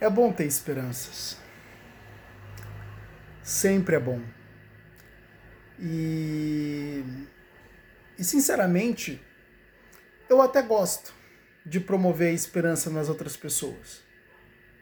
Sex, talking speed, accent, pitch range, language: male, 75 wpm, Brazilian, 145-200 Hz, Portuguese